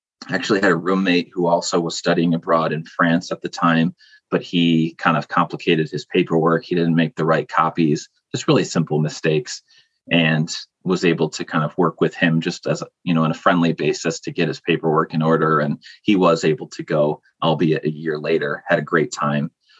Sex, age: male, 30-49